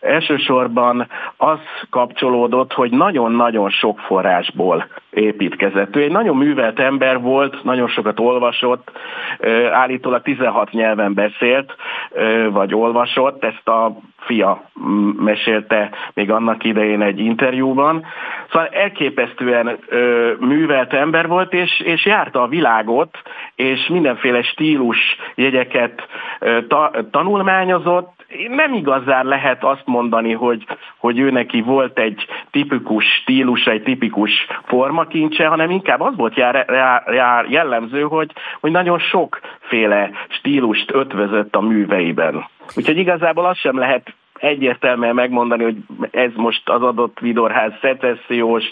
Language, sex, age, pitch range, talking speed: Hungarian, male, 50-69, 115-145 Hz, 110 wpm